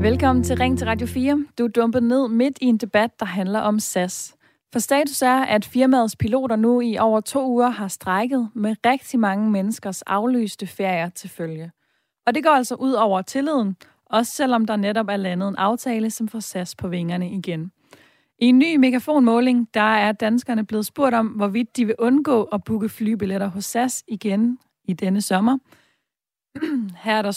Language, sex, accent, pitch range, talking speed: Danish, female, native, 195-240 Hz, 190 wpm